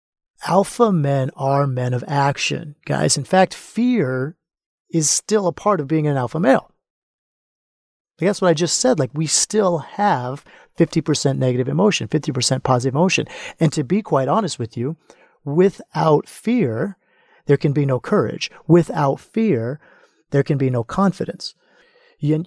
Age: 40-59